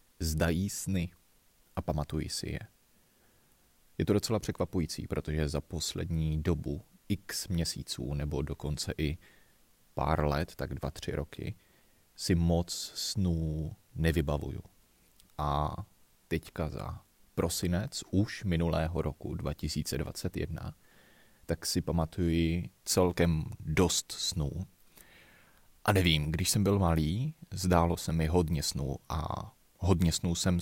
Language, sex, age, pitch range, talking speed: Czech, male, 30-49, 75-90 Hz, 115 wpm